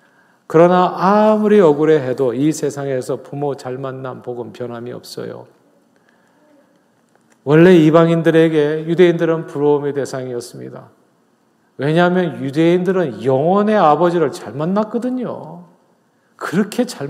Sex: male